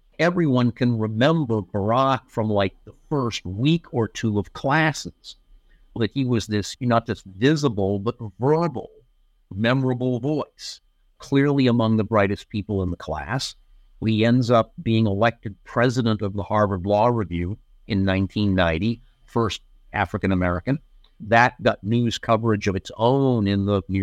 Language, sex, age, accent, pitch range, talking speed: English, male, 50-69, American, 100-120 Hz, 140 wpm